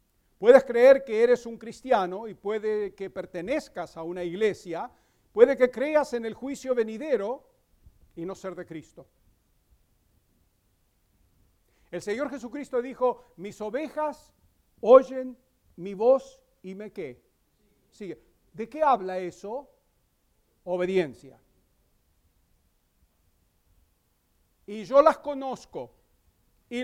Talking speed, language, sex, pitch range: 105 wpm, English, male, 165-245 Hz